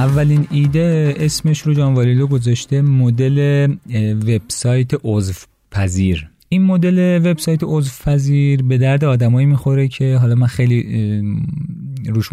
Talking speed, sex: 115 wpm, male